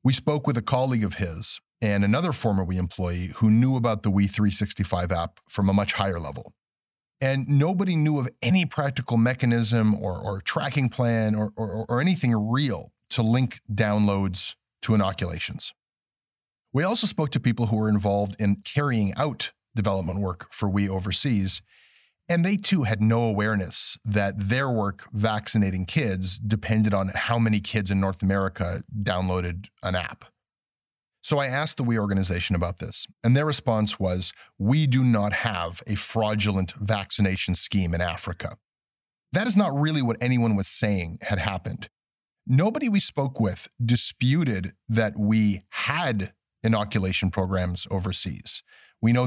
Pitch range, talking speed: 95-125 Hz, 155 wpm